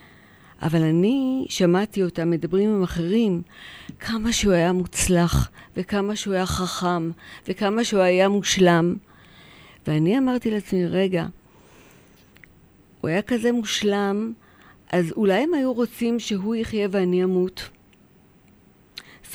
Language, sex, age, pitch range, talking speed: Hebrew, female, 50-69, 180-225 Hz, 115 wpm